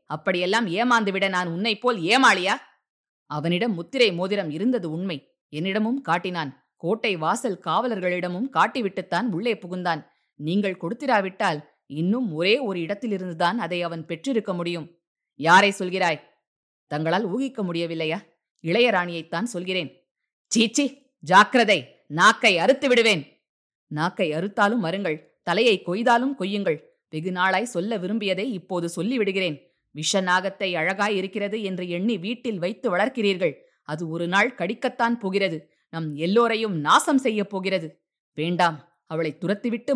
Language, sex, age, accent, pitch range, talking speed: Tamil, female, 20-39, native, 170-215 Hz, 110 wpm